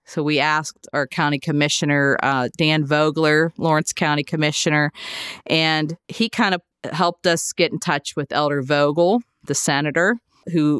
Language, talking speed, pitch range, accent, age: English, 150 wpm, 140-160 Hz, American, 40-59